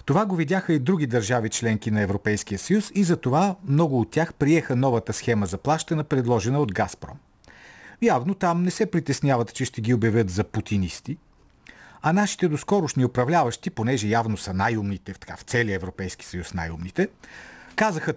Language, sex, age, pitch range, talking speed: Bulgarian, male, 50-69, 105-165 Hz, 160 wpm